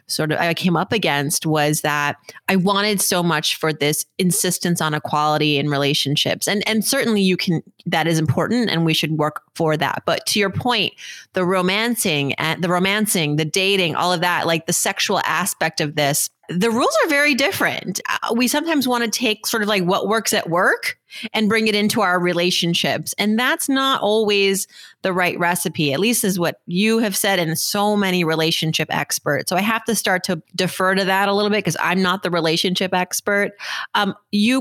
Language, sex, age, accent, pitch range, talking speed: English, female, 30-49, American, 170-215 Hz, 200 wpm